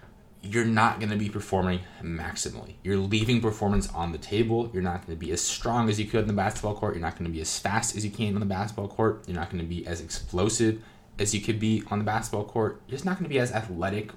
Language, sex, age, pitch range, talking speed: English, male, 20-39, 95-115 Hz, 250 wpm